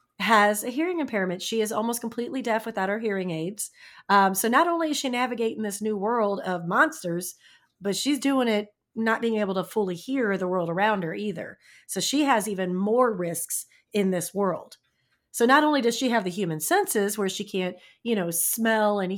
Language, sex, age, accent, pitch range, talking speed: English, female, 40-59, American, 185-230 Hz, 205 wpm